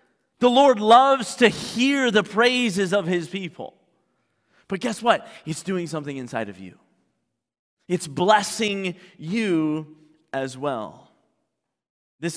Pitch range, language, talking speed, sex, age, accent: 155-210 Hz, English, 120 wpm, male, 30-49, American